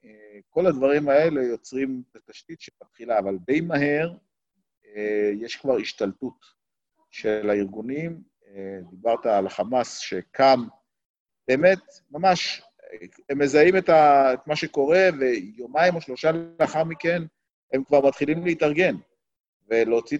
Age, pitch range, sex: 50-69, 120-165 Hz, male